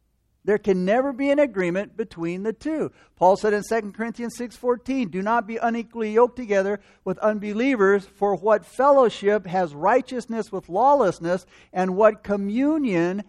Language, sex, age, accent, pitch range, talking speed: English, male, 60-79, American, 190-240 Hz, 155 wpm